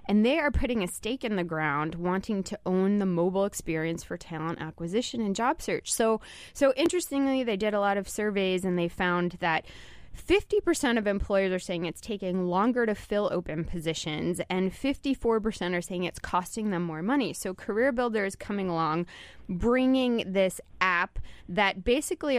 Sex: female